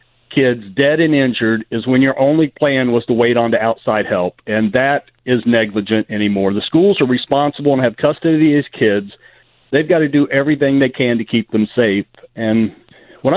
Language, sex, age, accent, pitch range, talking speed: English, male, 50-69, American, 120-160 Hz, 195 wpm